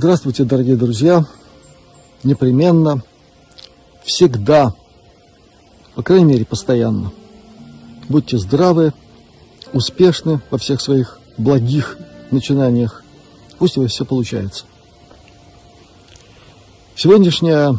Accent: native